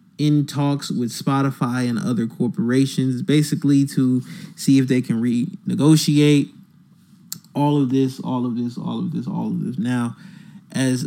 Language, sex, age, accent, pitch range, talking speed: English, male, 20-39, American, 125-185 Hz, 150 wpm